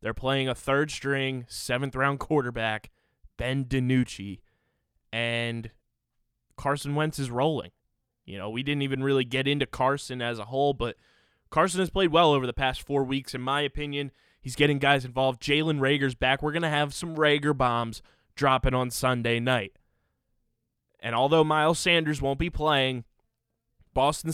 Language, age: English, 20-39